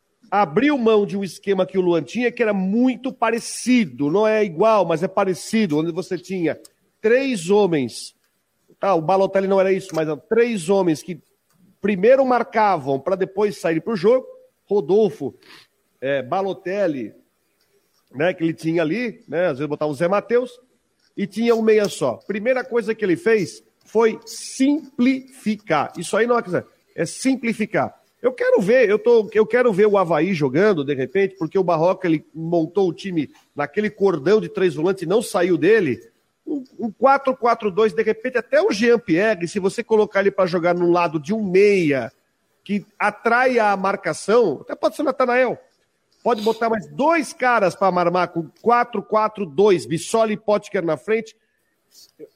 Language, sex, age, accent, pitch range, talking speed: Portuguese, male, 50-69, Brazilian, 180-235 Hz, 165 wpm